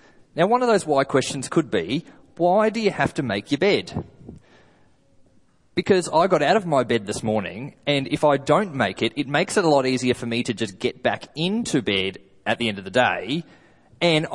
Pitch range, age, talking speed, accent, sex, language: 115-160 Hz, 20-39, 215 wpm, Australian, male, English